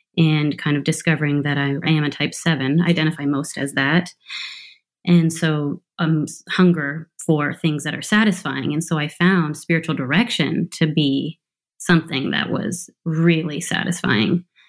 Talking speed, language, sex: 150 wpm, English, female